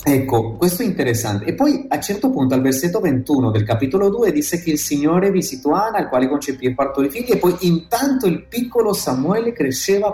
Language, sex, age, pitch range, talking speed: Italian, male, 30-49, 120-180 Hz, 205 wpm